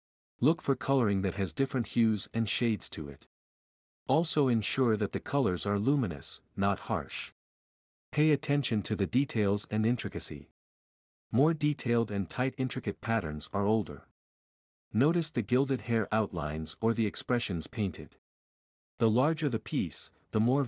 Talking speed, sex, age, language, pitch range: 145 wpm, male, 50-69, English, 95-130 Hz